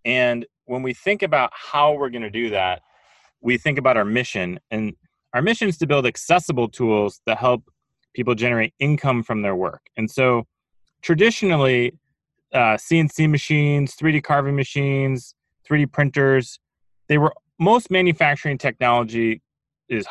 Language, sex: English, male